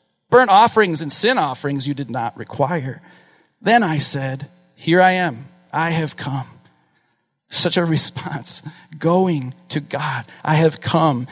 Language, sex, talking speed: English, male, 145 wpm